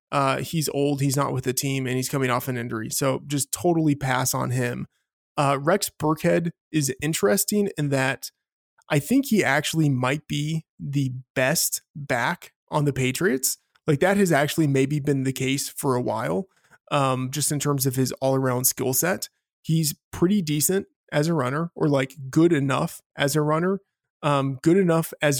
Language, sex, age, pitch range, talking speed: English, male, 20-39, 135-160 Hz, 180 wpm